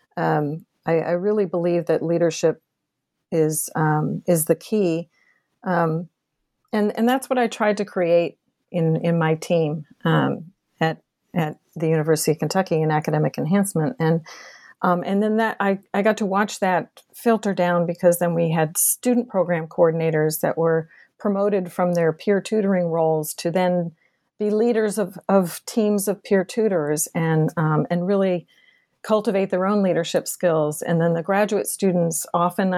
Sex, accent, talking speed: female, American, 160 wpm